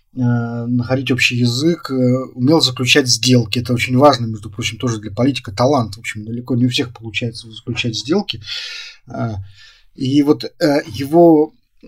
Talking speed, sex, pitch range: 135 wpm, male, 120-140 Hz